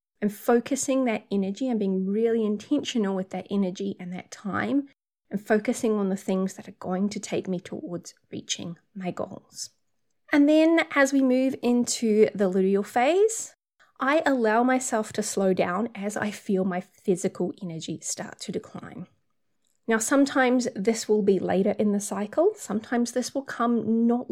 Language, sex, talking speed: English, female, 165 wpm